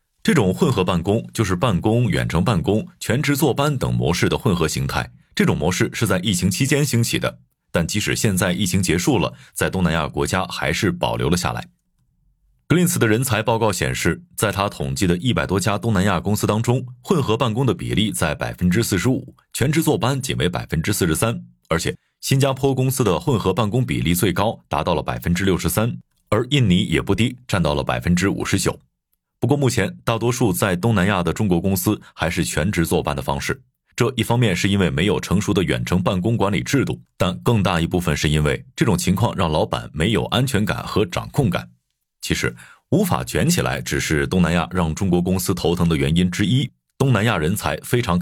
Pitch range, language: 80-115 Hz, Chinese